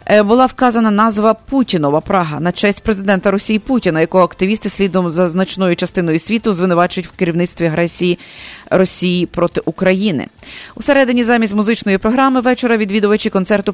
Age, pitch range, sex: 30-49, 180-210 Hz, female